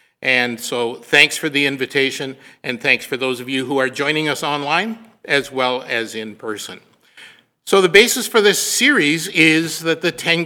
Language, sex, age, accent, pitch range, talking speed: English, male, 50-69, American, 145-195 Hz, 185 wpm